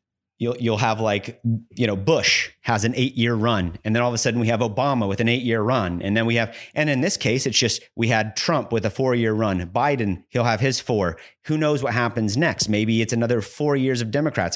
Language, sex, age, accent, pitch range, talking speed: English, male, 30-49, American, 100-125 Hz, 240 wpm